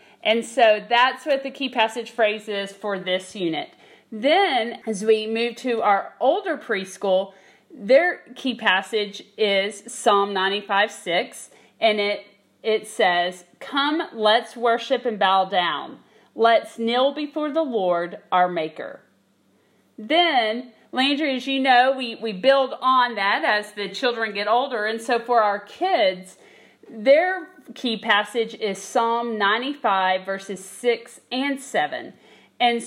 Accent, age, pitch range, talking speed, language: American, 40-59, 200-265 Hz, 135 wpm, English